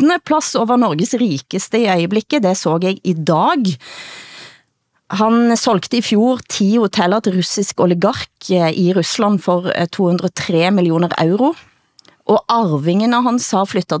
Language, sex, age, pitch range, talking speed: Danish, female, 30-49, 180-245 Hz, 135 wpm